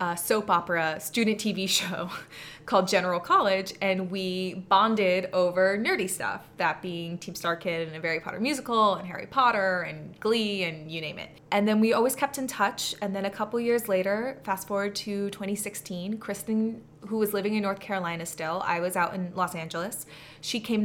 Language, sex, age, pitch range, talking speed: English, female, 20-39, 185-230 Hz, 195 wpm